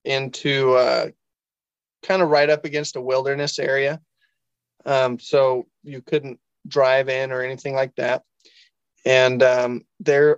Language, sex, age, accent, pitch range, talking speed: English, male, 20-39, American, 130-145 Hz, 135 wpm